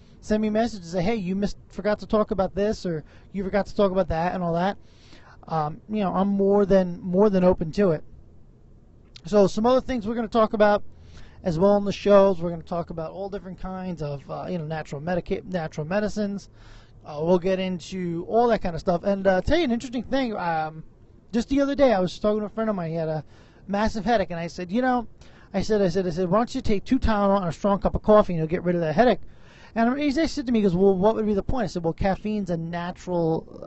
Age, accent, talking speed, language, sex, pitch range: 20-39, American, 265 wpm, English, male, 175-215 Hz